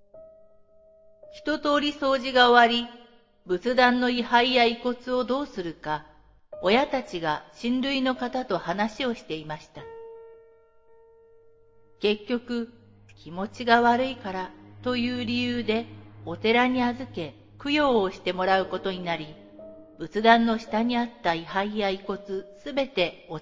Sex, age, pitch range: female, 50-69, 170-245 Hz